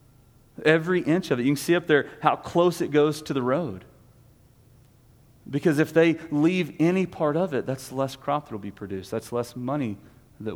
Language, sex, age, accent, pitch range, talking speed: English, male, 40-59, American, 115-145 Hz, 200 wpm